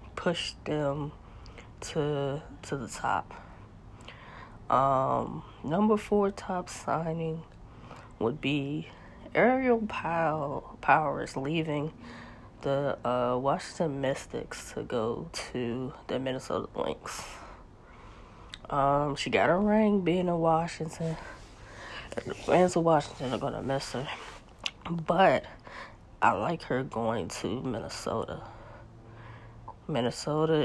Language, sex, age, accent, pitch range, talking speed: English, female, 20-39, American, 110-155 Hz, 105 wpm